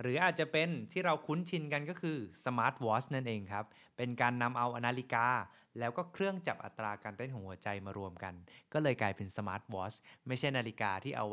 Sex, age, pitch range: male, 20-39, 110-155 Hz